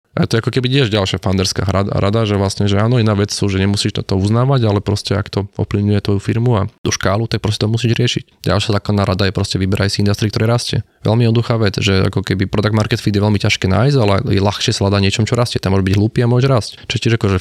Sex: male